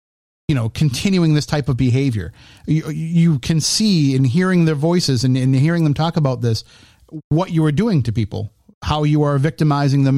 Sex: male